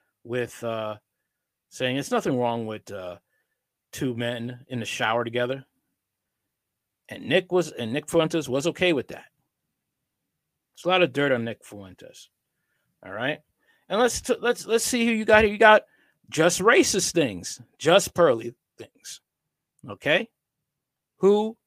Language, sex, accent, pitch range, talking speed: English, male, American, 120-155 Hz, 145 wpm